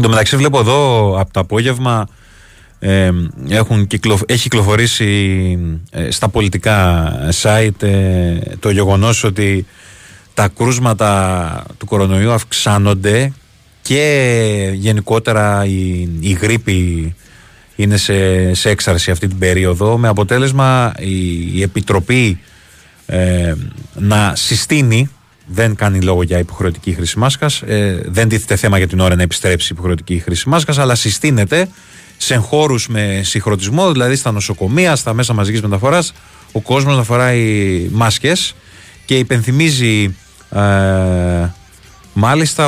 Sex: male